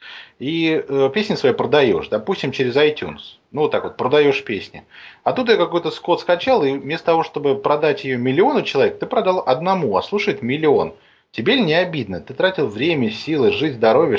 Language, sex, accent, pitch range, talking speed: Russian, male, native, 125-175 Hz, 180 wpm